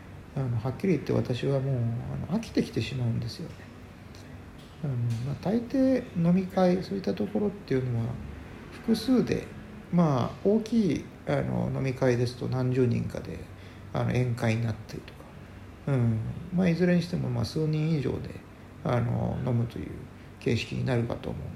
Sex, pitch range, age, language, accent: male, 105-170 Hz, 60-79, Japanese, native